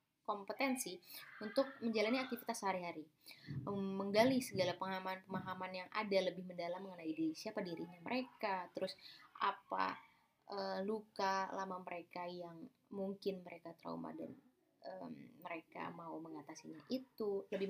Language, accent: Indonesian, native